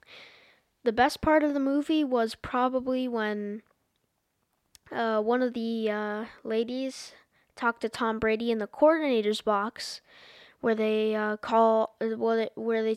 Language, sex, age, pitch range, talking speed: English, female, 10-29, 210-230 Hz, 145 wpm